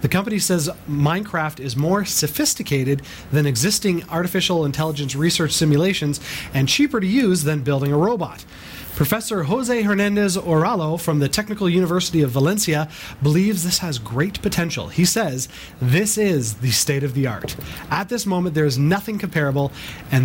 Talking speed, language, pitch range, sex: 155 wpm, English, 140-180 Hz, male